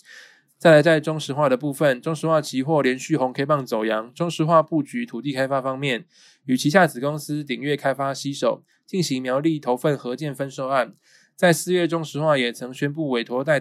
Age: 20-39